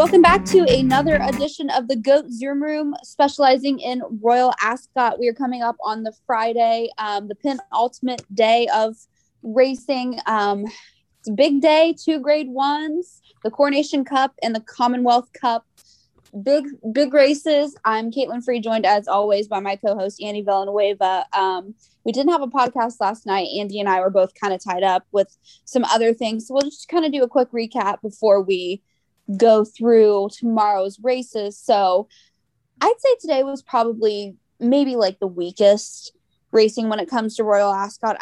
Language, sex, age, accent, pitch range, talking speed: English, female, 10-29, American, 200-260 Hz, 170 wpm